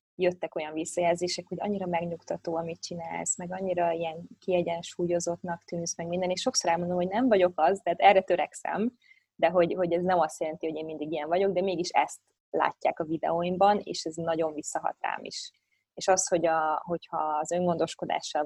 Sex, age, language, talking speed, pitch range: female, 20-39, Hungarian, 180 wpm, 160-180 Hz